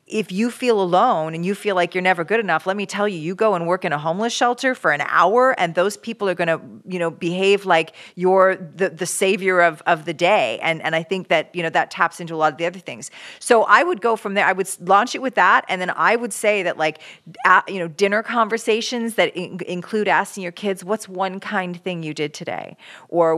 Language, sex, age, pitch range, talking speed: English, female, 40-59, 160-200 Hz, 255 wpm